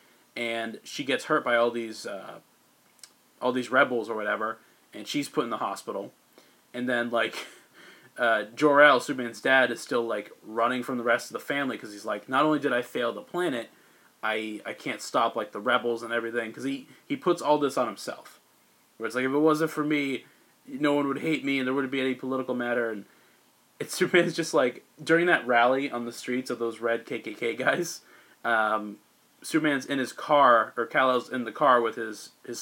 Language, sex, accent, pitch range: English, male, American, 120-155 Hz